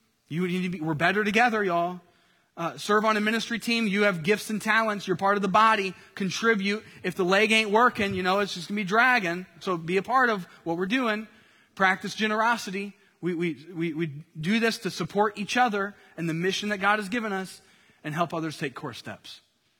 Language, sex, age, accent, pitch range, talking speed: English, male, 30-49, American, 155-205 Hz, 220 wpm